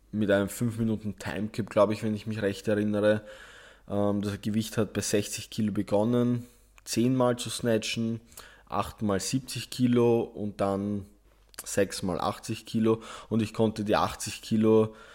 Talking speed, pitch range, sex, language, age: 155 wpm, 105-115 Hz, male, German, 20-39